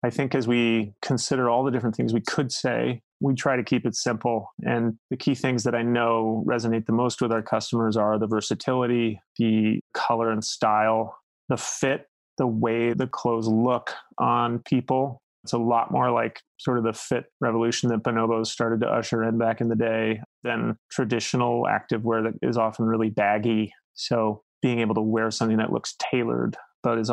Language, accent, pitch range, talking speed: English, American, 110-120 Hz, 190 wpm